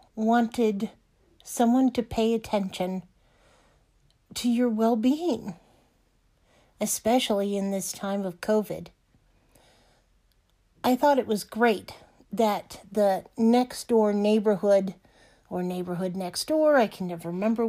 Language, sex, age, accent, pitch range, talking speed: English, female, 50-69, American, 195-245 Hz, 105 wpm